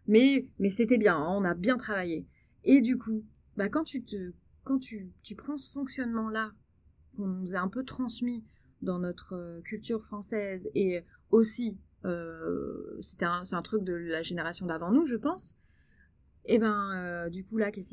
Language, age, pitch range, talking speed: French, 20-39, 190-260 Hz, 180 wpm